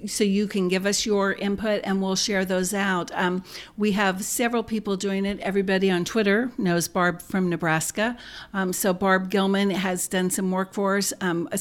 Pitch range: 175-200 Hz